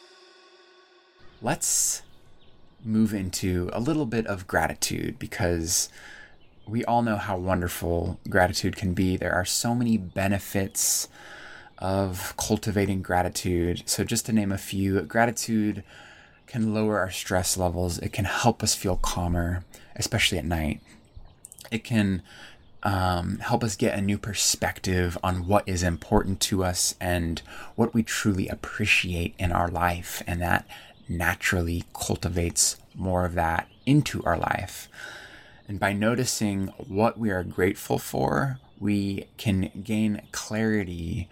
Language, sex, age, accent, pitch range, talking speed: English, male, 20-39, American, 90-110 Hz, 130 wpm